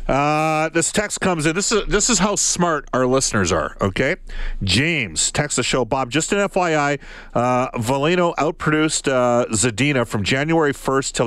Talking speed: 165 wpm